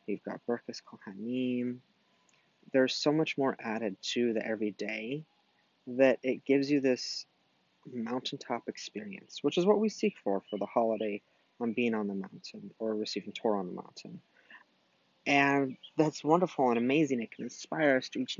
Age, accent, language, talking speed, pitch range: 30-49, American, English, 165 wpm, 110-140 Hz